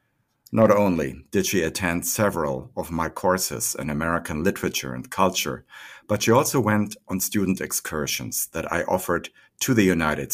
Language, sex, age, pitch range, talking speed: English, male, 60-79, 80-110 Hz, 155 wpm